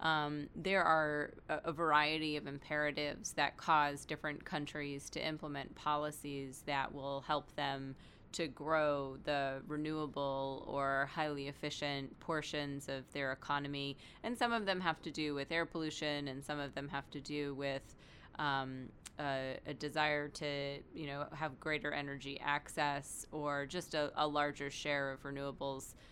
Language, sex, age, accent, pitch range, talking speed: English, female, 20-39, American, 140-155 Hz, 155 wpm